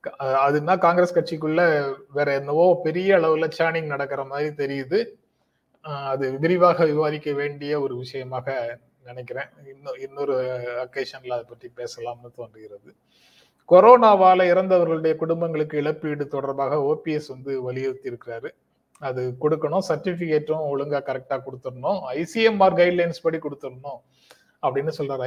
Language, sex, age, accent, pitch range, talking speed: Tamil, male, 30-49, native, 135-175 Hz, 110 wpm